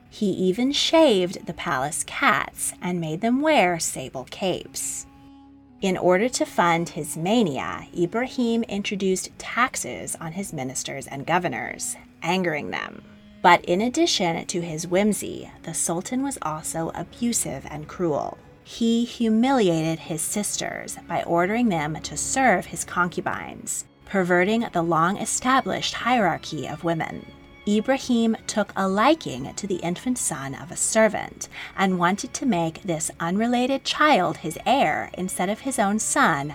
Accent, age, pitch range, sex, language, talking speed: American, 30-49, 165-235 Hz, female, English, 135 wpm